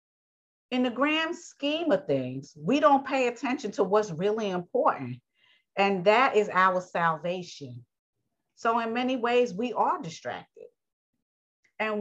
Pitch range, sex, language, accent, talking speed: 190-240 Hz, female, English, American, 135 wpm